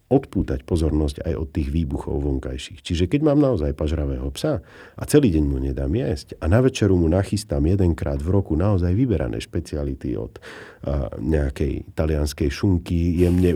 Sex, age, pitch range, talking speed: male, 50-69, 75-95 Hz, 160 wpm